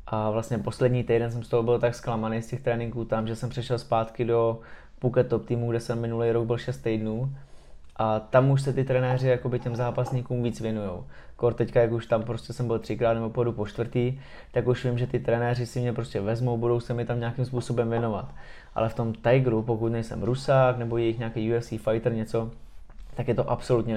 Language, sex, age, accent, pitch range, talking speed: Czech, male, 20-39, native, 115-125 Hz, 210 wpm